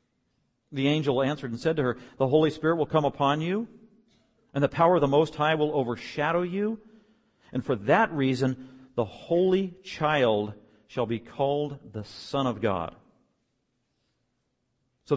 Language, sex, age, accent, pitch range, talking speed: English, male, 50-69, American, 115-135 Hz, 155 wpm